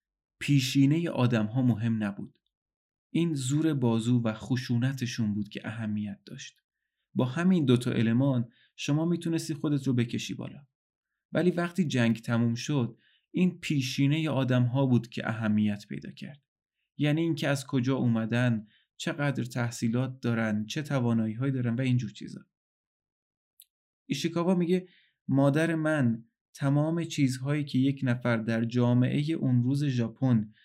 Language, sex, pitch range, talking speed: Persian, male, 120-150 Hz, 130 wpm